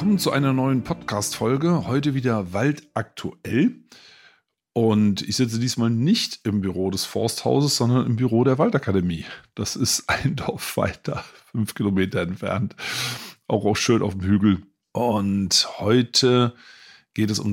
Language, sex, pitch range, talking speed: German, male, 95-120 Hz, 135 wpm